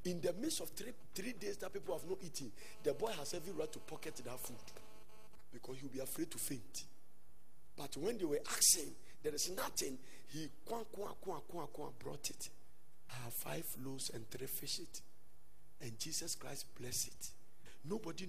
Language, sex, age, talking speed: English, male, 50-69, 165 wpm